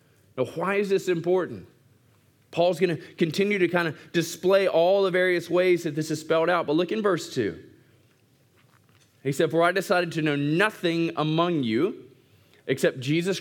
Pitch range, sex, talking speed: 125-175 Hz, male, 175 wpm